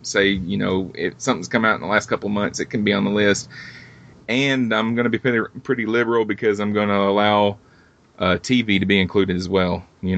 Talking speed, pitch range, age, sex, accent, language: 235 wpm, 95-110 Hz, 30-49, male, American, English